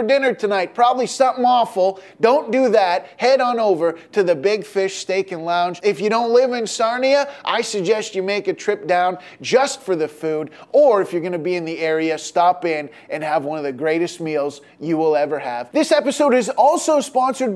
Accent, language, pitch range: American, English, 175-245 Hz